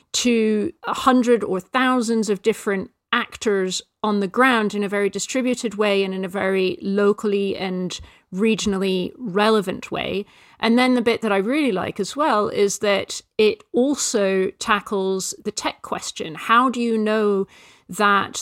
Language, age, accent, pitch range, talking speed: English, 40-59, British, 195-235 Hz, 155 wpm